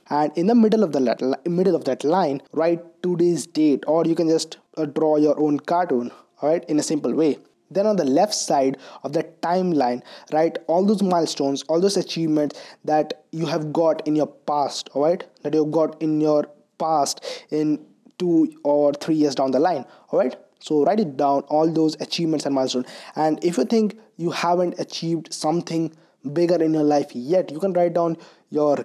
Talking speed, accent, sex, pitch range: 200 wpm, Indian, male, 145-175 Hz